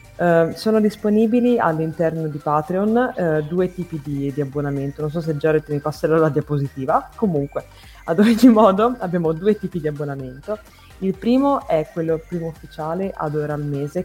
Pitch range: 155-205 Hz